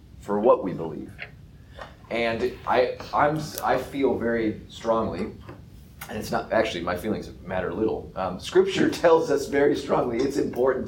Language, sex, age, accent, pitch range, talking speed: English, male, 30-49, American, 95-120 Hz, 150 wpm